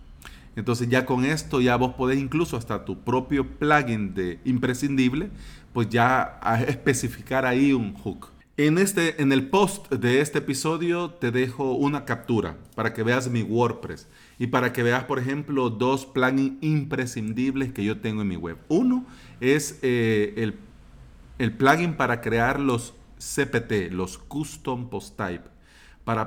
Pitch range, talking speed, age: 105-135 Hz, 155 wpm, 40-59